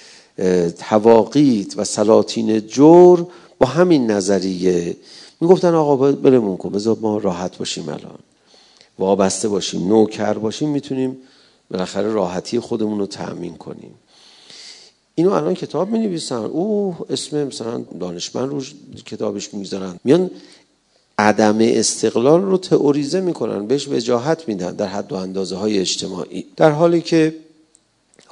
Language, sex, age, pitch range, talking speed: Persian, male, 40-59, 110-150 Hz, 120 wpm